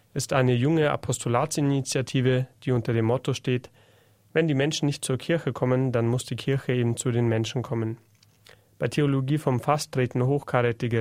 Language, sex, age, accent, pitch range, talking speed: German, male, 30-49, German, 120-140 Hz, 170 wpm